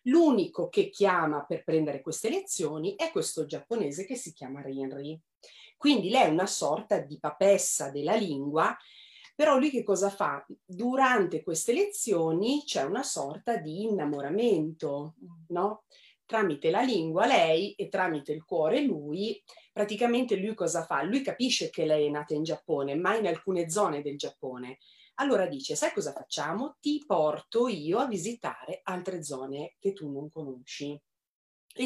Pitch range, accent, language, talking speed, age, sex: 150-220 Hz, native, Italian, 155 wpm, 30-49, female